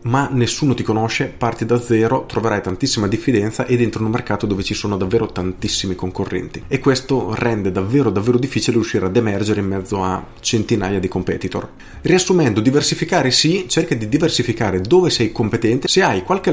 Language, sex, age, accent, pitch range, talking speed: Italian, male, 30-49, native, 100-125 Hz, 175 wpm